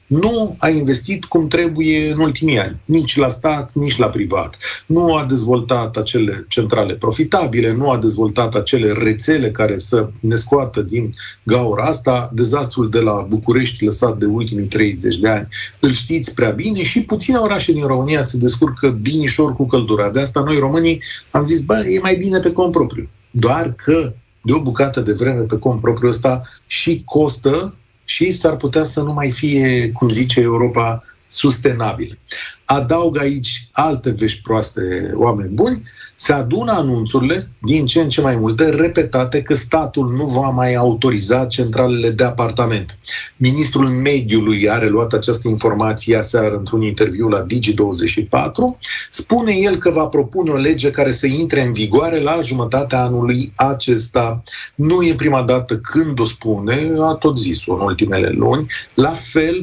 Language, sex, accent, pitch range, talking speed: Romanian, male, native, 115-150 Hz, 160 wpm